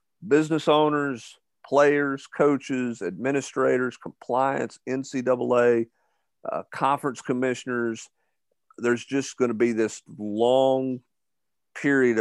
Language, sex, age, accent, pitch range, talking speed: English, male, 50-69, American, 115-130 Hz, 90 wpm